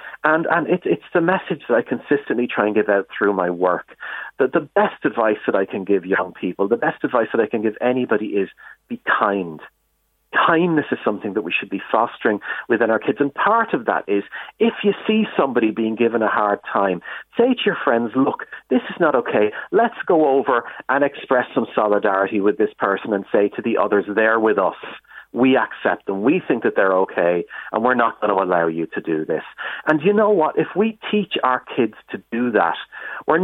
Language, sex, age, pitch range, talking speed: English, male, 40-59, 100-165 Hz, 215 wpm